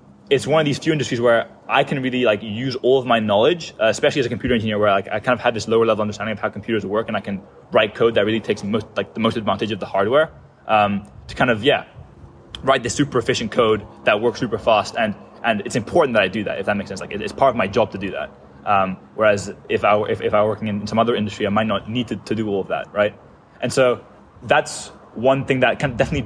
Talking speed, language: 275 wpm, English